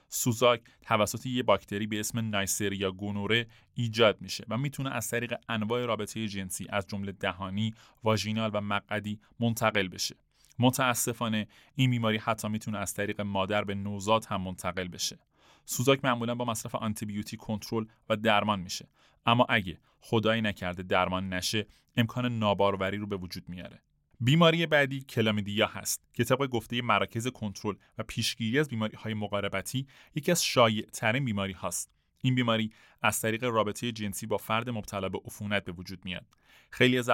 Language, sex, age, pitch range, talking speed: Persian, male, 30-49, 100-120 Hz, 150 wpm